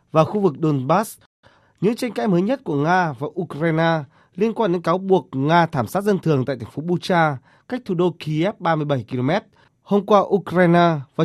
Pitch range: 140-190 Hz